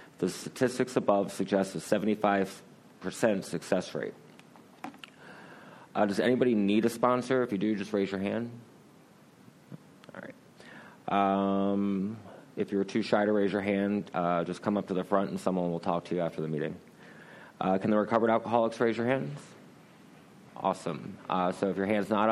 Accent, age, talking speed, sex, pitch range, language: American, 30-49, 170 wpm, male, 95-110 Hz, English